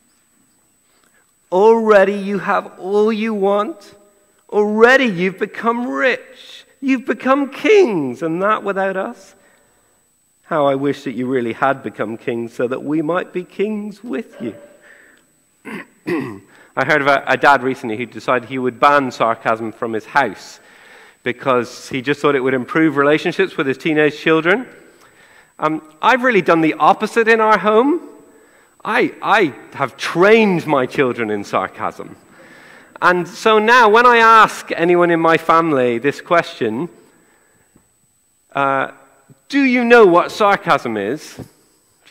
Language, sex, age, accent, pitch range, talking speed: English, male, 50-69, British, 140-220 Hz, 140 wpm